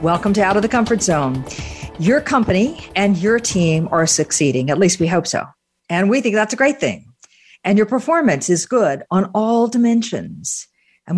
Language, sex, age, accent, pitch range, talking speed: English, female, 50-69, American, 155-200 Hz, 190 wpm